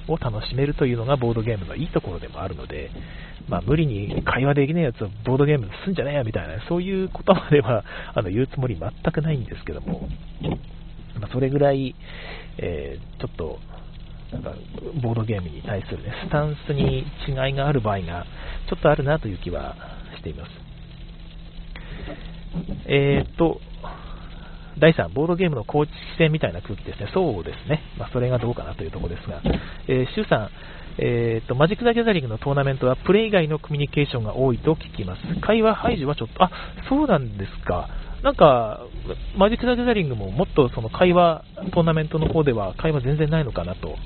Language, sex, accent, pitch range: Japanese, male, native, 105-160 Hz